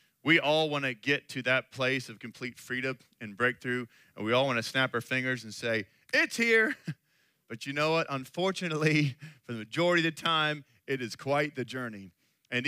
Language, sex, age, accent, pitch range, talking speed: English, male, 30-49, American, 140-165 Hz, 200 wpm